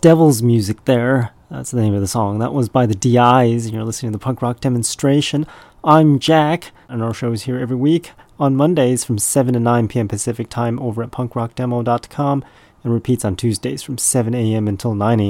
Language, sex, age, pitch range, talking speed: English, male, 30-49, 105-130 Hz, 205 wpm